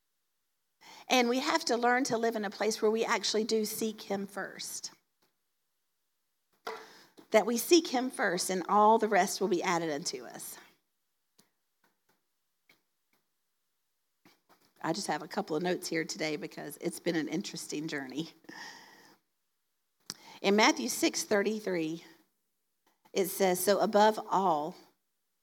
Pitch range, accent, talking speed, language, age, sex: 170-225 Hz, American, 130 wpm, English, 50-69, female